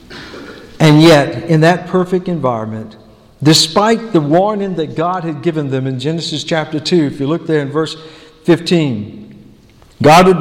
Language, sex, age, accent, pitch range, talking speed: English, male, 50-69, American, 155-200 Hz, 155 wpm